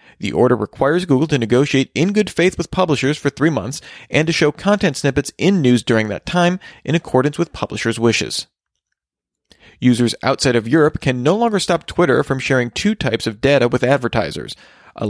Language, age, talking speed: English, 40-59, 185 wpm